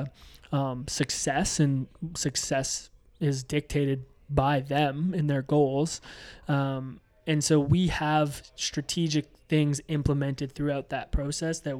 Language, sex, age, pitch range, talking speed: English, male, 20-39, 135-150 Hz, 115 wpm